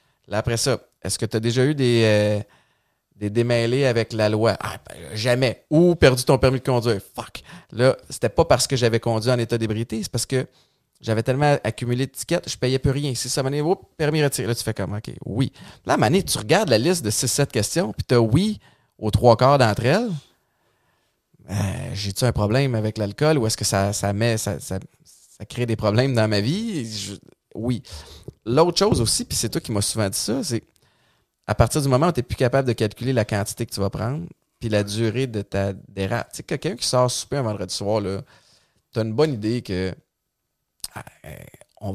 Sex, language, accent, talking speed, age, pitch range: male, French, Canadian, 215 wpm, 30-49, 105-130 Hz